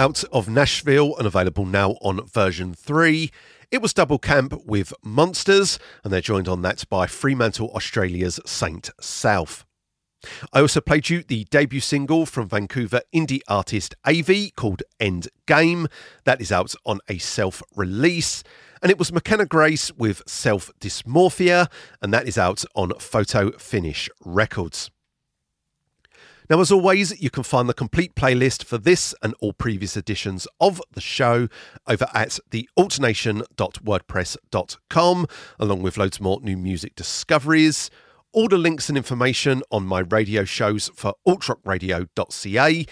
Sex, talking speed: male, 140 wpm